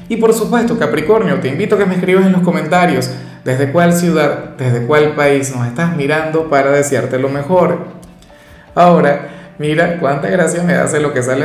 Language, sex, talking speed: Spanish, male, 185 wpm